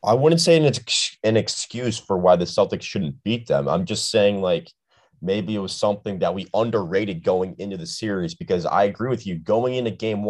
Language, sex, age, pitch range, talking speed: English, male, 20-39, 85-110 Hz, 220 wpm